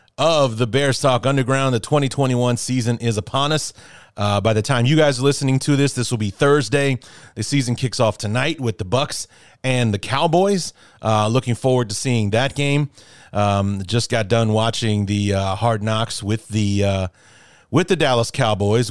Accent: American